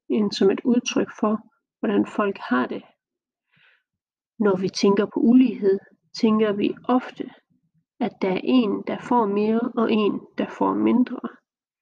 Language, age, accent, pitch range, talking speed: Danish, 40-59, native, 210-255 Hz, 145 wpm